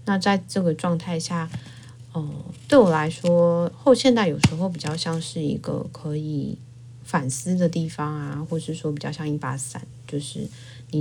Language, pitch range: Chinese, 140-165 Hz